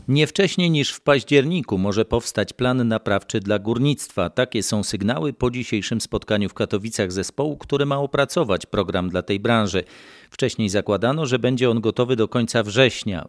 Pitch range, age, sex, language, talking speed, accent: 100-115 Hz, 40-59, male, Polish, 165 wpm, native